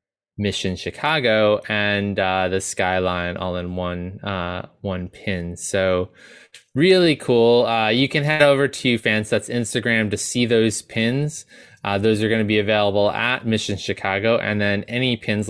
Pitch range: 100-125 Hz